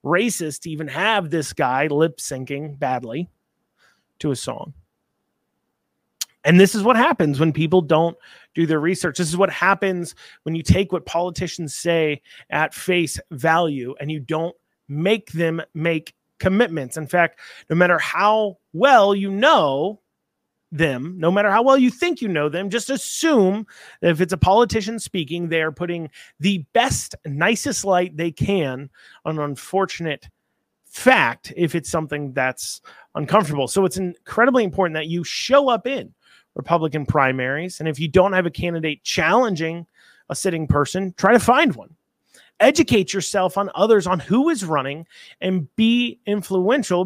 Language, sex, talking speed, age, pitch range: English, male, 155 wpm, 30-49, 160-200 Hz